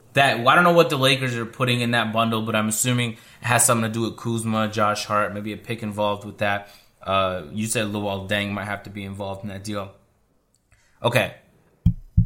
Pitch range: 110-145 Hz